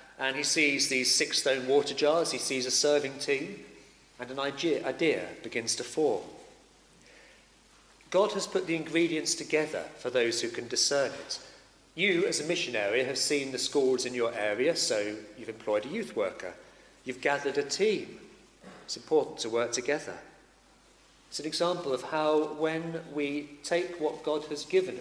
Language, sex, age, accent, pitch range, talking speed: English, male, 40-59, British, 135-195 Hz, 170 wpm